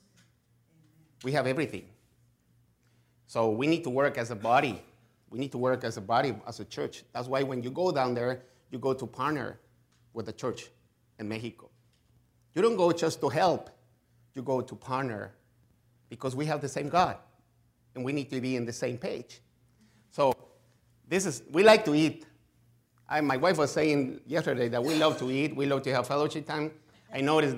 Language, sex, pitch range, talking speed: English, male, 120-155 Hz, 190 wpm